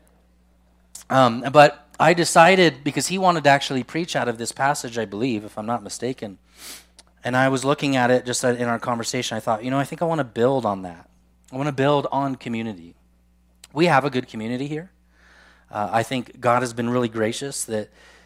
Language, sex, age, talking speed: English, male, 30-49, 205 wpm